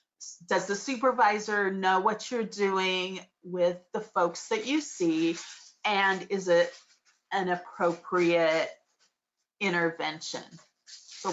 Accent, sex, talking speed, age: American, female, 105 wpm, 30-49